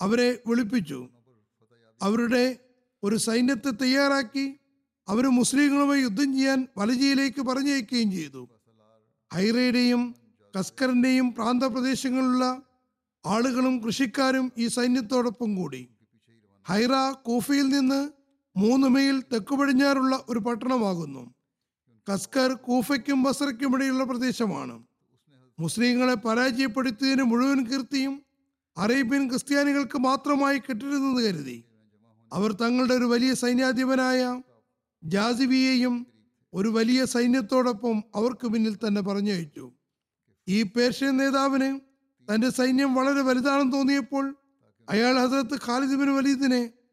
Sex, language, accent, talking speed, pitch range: male, Malayalam, native, 85 wpm, 205-270 Hz